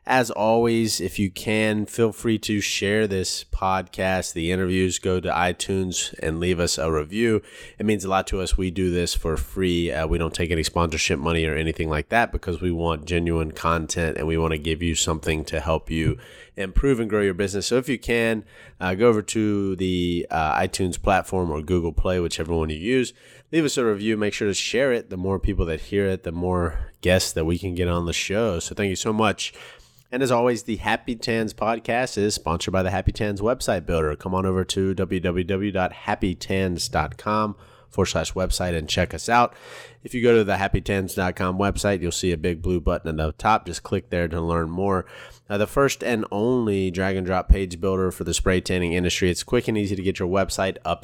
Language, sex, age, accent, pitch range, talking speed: English, male, 30-49, American, 85-105 Hz, 215 wpm